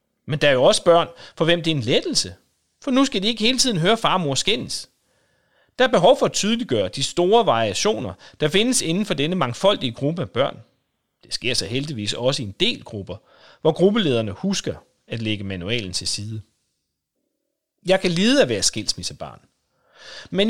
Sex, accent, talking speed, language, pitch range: male, native, 190 wpm, Danish, 120-195 Hz